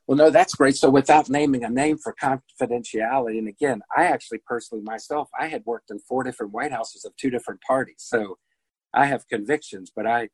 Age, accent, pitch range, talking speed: 50-69, American, 105-130 Hz, 205 wpm